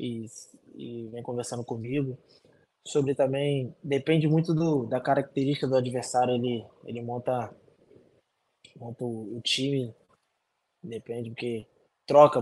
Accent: Brazilian